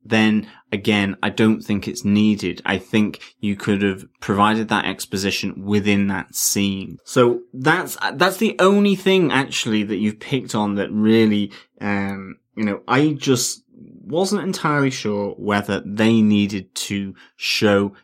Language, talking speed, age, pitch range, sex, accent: English, 145 wpm, 20-39, 100-115 Hz, male, British